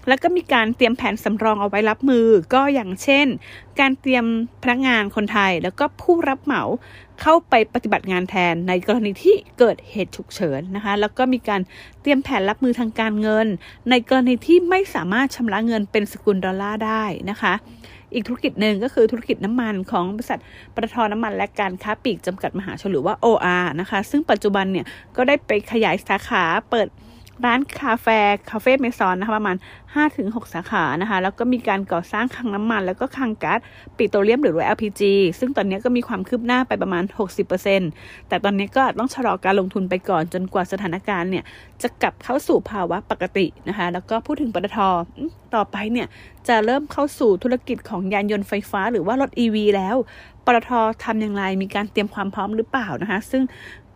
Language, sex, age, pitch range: English, female, 30-49, 195-250 Hz